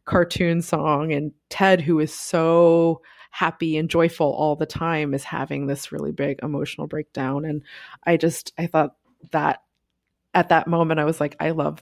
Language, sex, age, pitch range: English, female, 20-39, 145-165 Hz